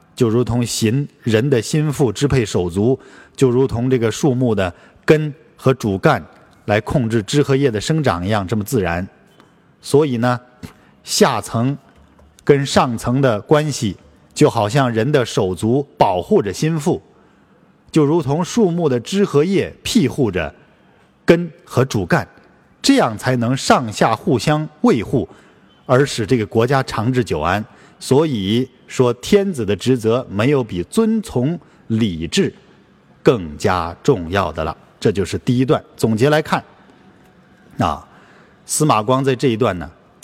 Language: Chinese